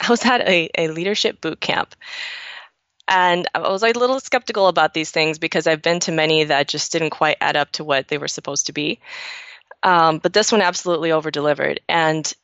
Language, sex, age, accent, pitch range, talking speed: English, female, 20-39, American, 165-215 Hz, 205 wpm